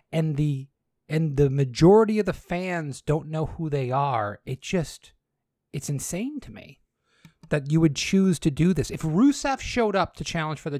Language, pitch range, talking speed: English, 135-180 Hz, 190 wpm